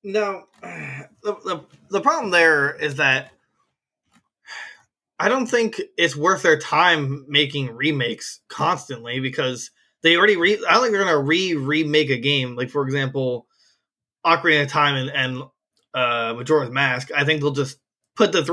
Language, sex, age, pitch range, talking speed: English, male, 20-39, 135-170 Hz, 160 wpm